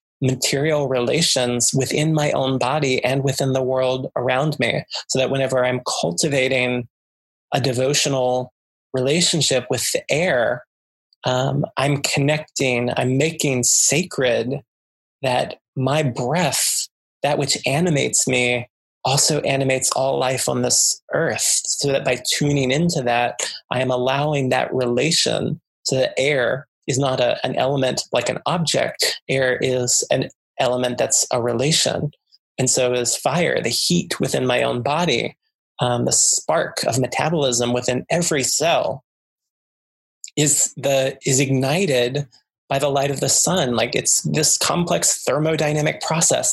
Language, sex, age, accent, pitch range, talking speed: English, male, 20-39, American, 125-145 Hz, 135 wpm